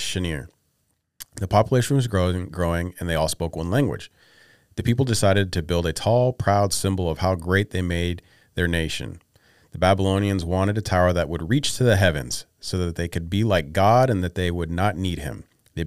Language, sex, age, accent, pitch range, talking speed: English, male, 40-59, American, 90-110 Hz, 200 wpm